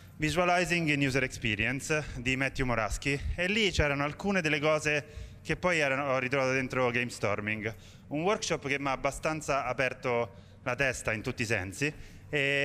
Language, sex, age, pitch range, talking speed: Italian, male, 20-39, 115-145 Hz, 155 wpm